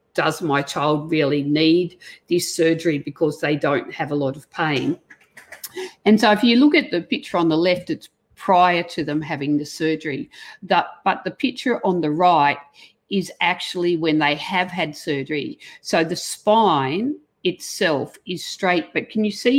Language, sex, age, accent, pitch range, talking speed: English, female, 50-69, Australian, 155-195 Hz, 170 wpm